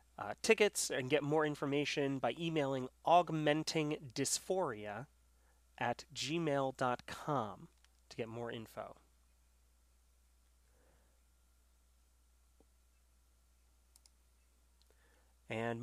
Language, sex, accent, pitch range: English, male, American, 115-155 Hz